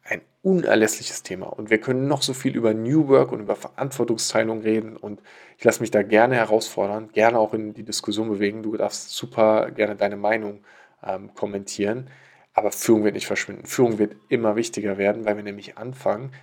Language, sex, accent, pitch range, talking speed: German, male, German, 105-115 Hz, 185 wpm